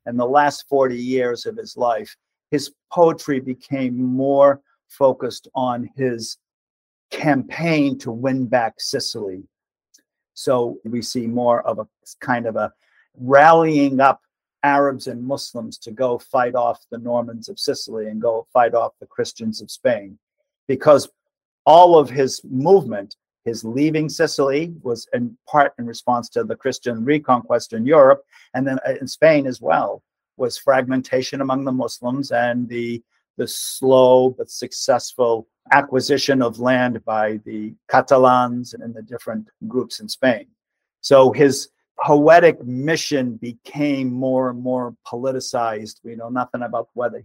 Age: 50-69